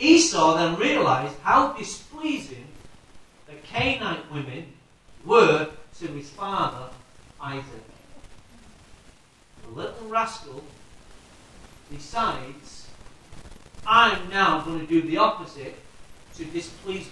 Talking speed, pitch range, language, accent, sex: 90 wpm, 140-220 Hz, English, British, male